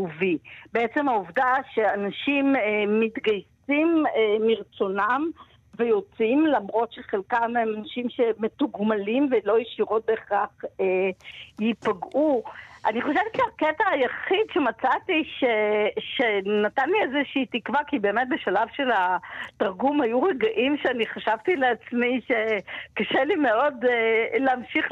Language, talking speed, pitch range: Hebrew, 95 wpm, 215-280 Hz